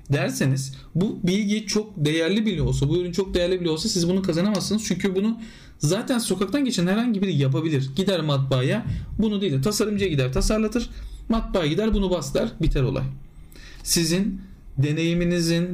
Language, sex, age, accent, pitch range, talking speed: Turkish, male, 40-59, native, 135-195 Hz, 150 wpm